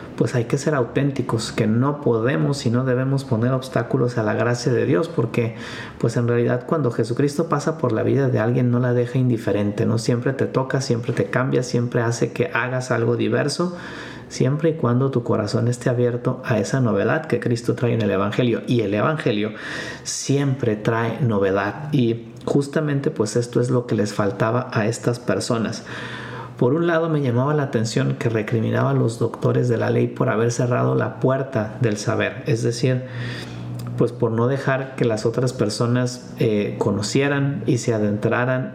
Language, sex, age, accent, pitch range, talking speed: Spanish, male, 40-59, Mexican, 115-135 Hz, 185 wpm